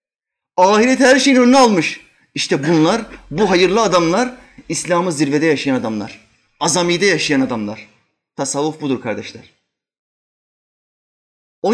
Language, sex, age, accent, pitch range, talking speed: Turkish, male, 30-49, native, 125-180 Hz, 105 wpm